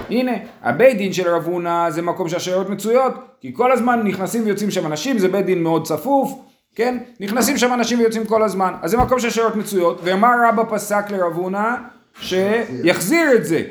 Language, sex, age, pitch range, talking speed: Hebrew, male, 30-49, 155-225 Hz, 135 wpm